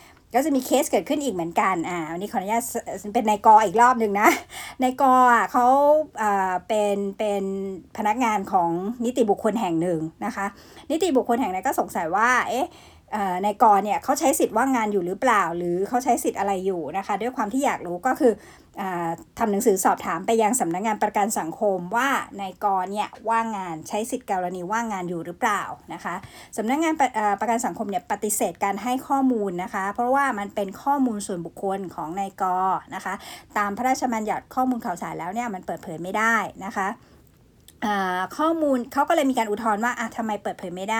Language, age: English, 60-79